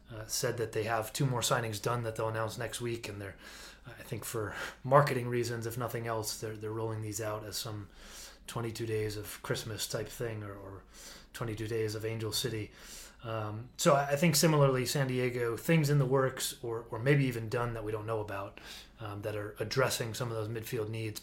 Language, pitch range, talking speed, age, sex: English, 110-130 Hz, 210 wpm, 30-49, male